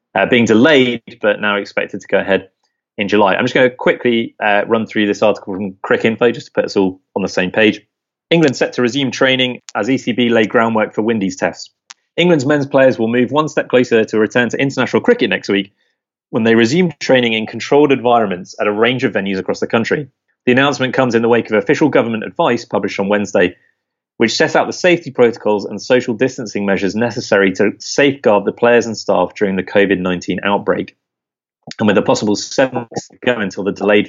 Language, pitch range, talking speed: English, 100-130 Hz, 210 wpm